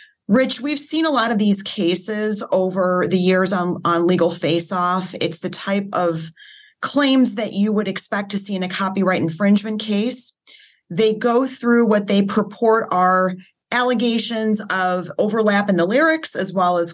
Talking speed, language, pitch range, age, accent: 165 wpm, English, 180-225 Hz, 30-49, American